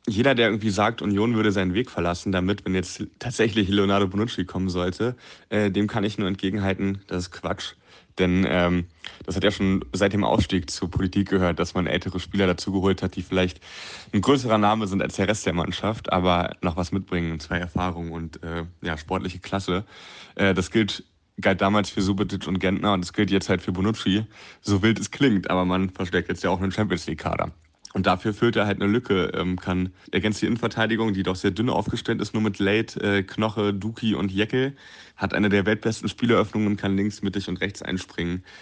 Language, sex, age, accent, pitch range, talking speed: German, male, 30-49, German, 90-105 Hz, 205 wpm